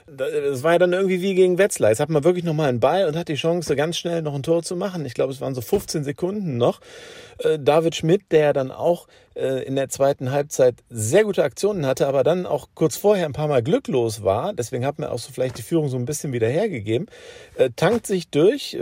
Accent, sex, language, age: German, male, German, 50-69